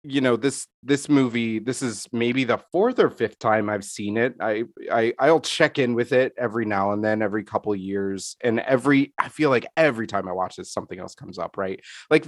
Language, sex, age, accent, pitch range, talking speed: English, male, 30-49, American, 100-125 Hz, 230 wpm